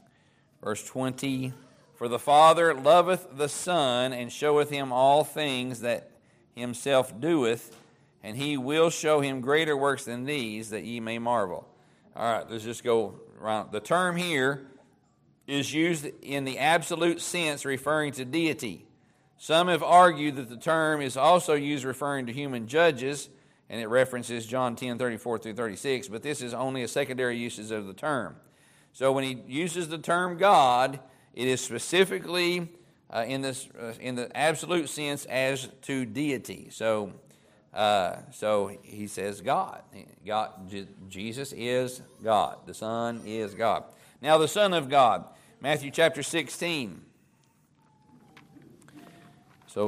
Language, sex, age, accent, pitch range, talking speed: English, male, 50-69, American, 120-150 Hz, 150 wpm